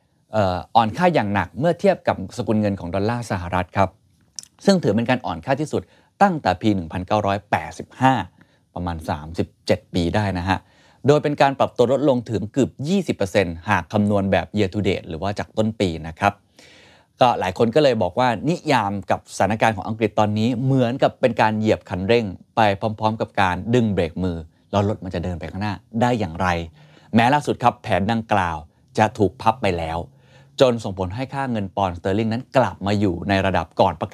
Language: Thai